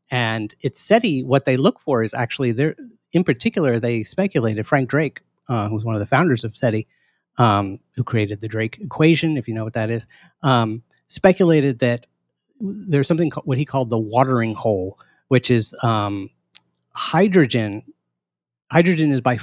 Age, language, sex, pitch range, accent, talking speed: 30-49, English, male, 110-135 Hz, American, 175 wpm